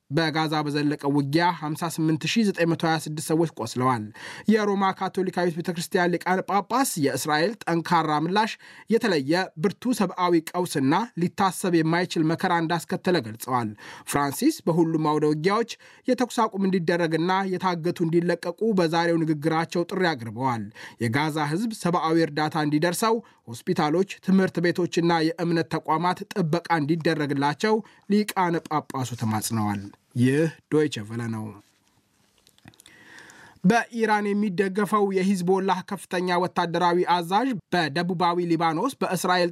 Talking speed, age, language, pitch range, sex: 95 wpm, 20-39, Amharic, 155-190 Hz, male